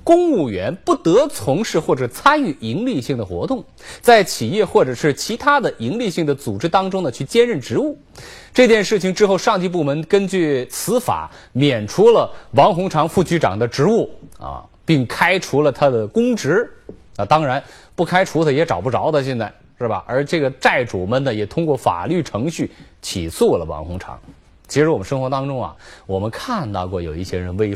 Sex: male